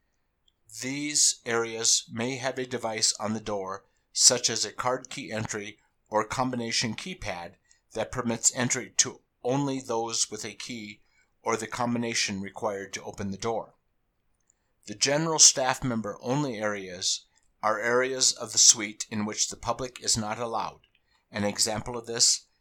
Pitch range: 105-125 Hz